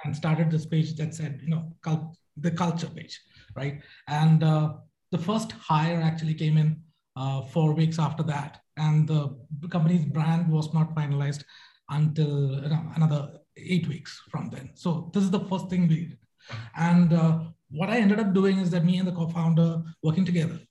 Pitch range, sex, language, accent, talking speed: 155-185 Hz, male, English, Indian, 175 wpm